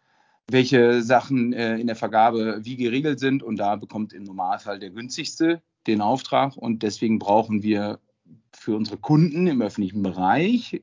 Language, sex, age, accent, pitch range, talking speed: German, male, 40-59, German, 110-135 Hz, 150 wpm